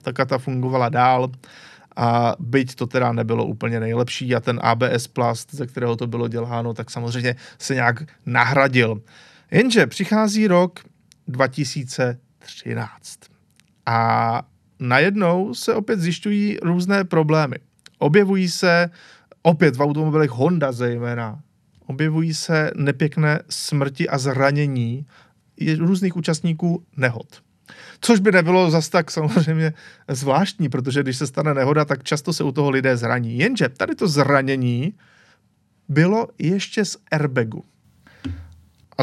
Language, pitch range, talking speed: Czech, 125-175 Hz, 120 wpm